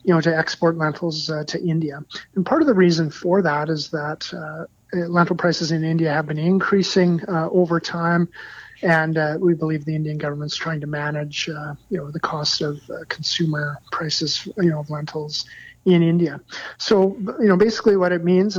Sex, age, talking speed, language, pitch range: male, 40-59, 195 wpm, English, 150-175 Hz